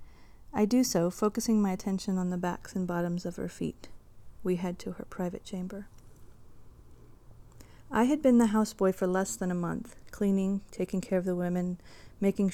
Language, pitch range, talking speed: English, 170-205 Hz, 175 wpm